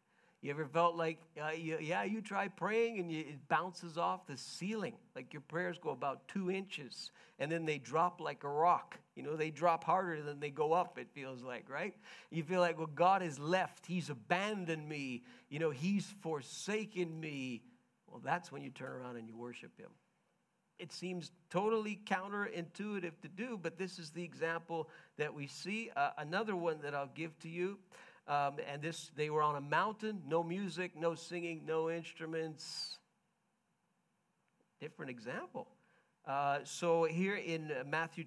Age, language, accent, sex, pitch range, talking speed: 50-69, English, American, male, 150-180 Hz, 170 wpm